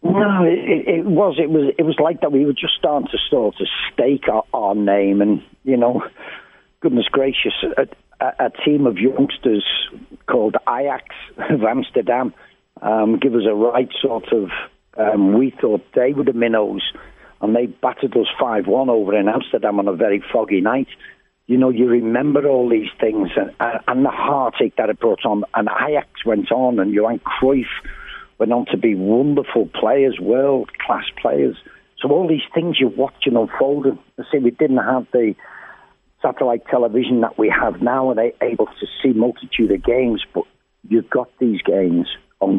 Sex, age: male, 50-69